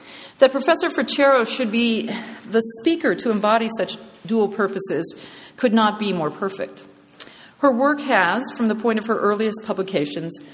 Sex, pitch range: female, 180-240 Hz